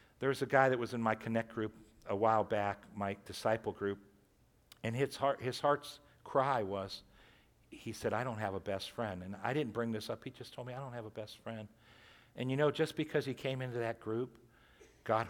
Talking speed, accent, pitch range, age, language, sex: 225 wpm, American, 105-125 Hz, 60-79, English, male